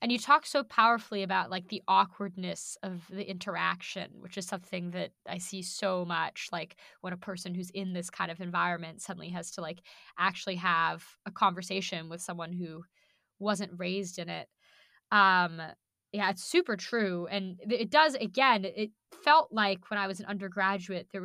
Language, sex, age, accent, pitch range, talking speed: English, female, 10-29, American, 180-215 Hz, 180 wpm